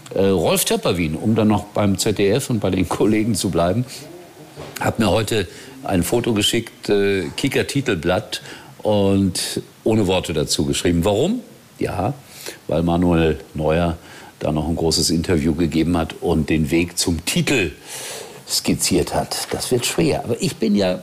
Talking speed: 155 wpm